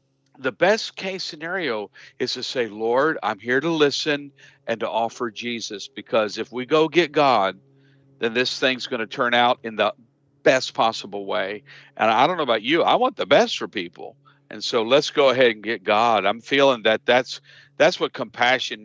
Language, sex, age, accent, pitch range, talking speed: English, male, 50-69, American, 115-145 Hz, 195 wpm